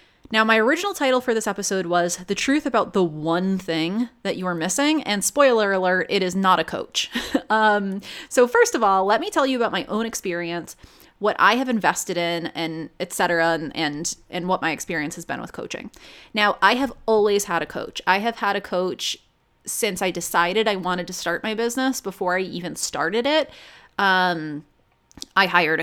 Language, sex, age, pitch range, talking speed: English, female, 20-39, 180-230 Hz, 200 wpm